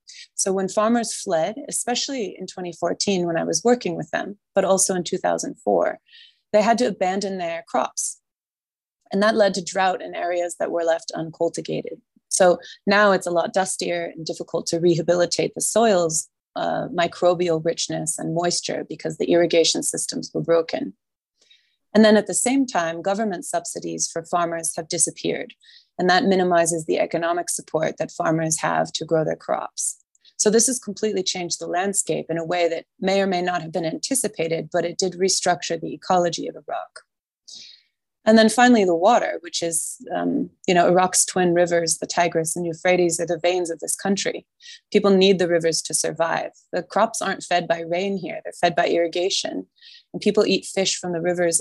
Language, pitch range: English, 170-200 Hz